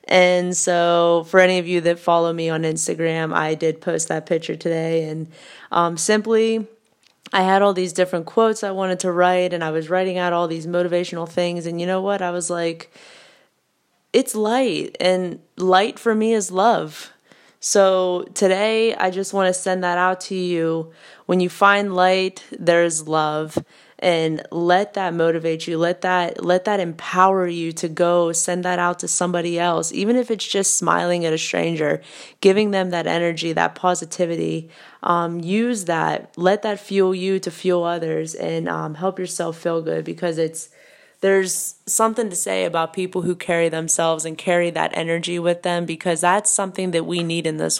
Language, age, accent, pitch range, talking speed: English, 20-39, American, 165-190 Hz, 180 wpm